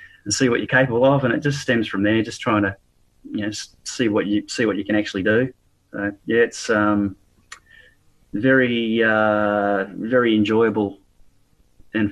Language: English